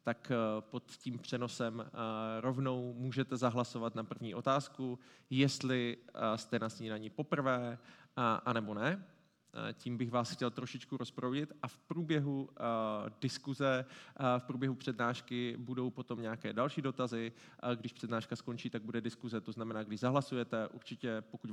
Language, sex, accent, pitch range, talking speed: Czech, male, native, 115-135 Hz, 130 wpm